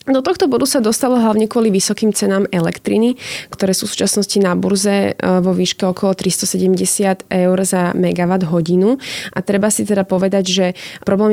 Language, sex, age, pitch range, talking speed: Slovak, female, 20-39, 175-195 Hz, 165 wpm